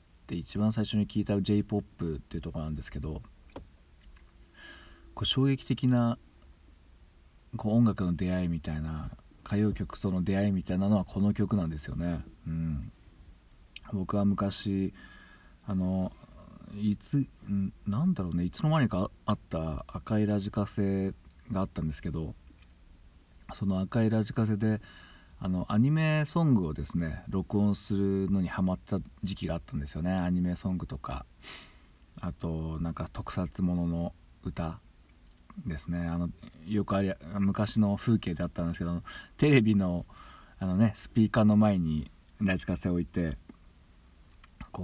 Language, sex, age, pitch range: Japanese, male, 40-59, 80-105 Hz